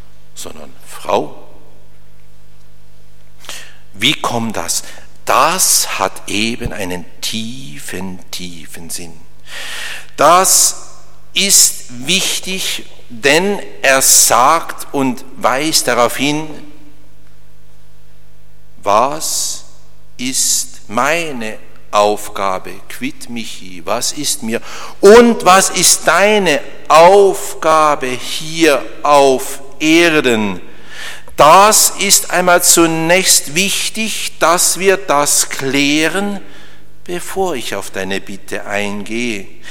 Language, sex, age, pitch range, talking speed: English, male, 60-79, 130-180 Hz, 80 wpm